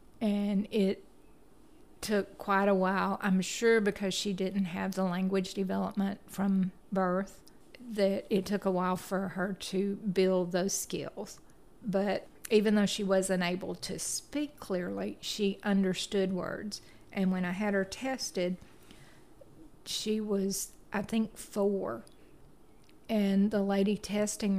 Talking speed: 135 wpm